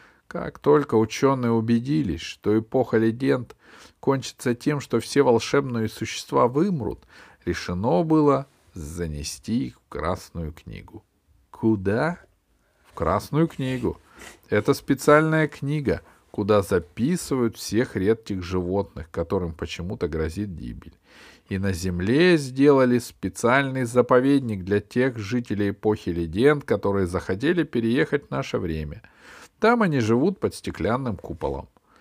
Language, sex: Russian, male